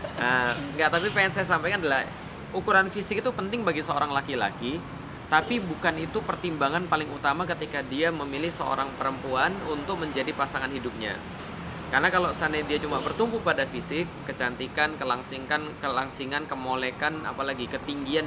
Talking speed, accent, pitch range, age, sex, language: 140 wpm, native, 150-185 Hz, 20-39, male, Indonesian